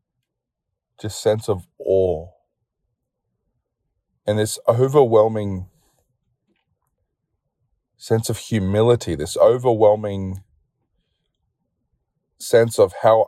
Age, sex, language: 20-39, male, English